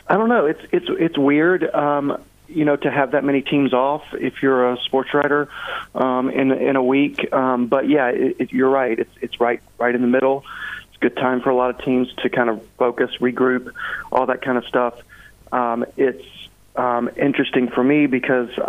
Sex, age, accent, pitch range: male, 40-59, American, 120-135 Hz